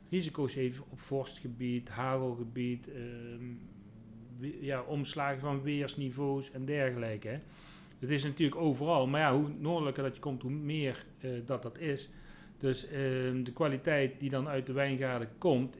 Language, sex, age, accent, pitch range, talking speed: Dutch, male, 40-59, Dutch, 115-140 Hz, 145 wpm